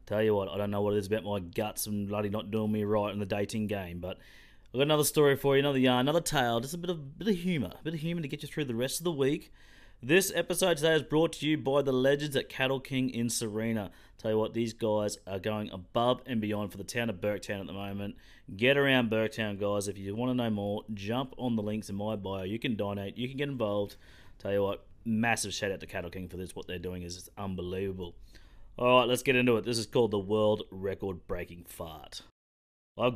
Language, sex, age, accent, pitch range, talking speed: English, male, 30-49, Australian, 100-135 Hz, 255 wpm